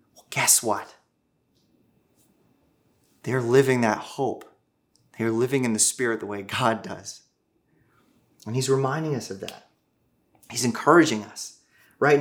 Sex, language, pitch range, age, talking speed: male, English, 110-145 Hz, 30-49, 125 wpm